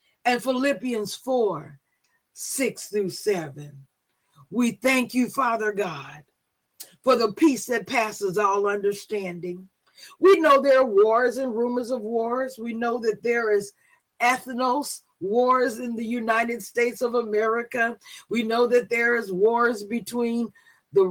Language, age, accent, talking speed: English, 50-69, American, 135 wpm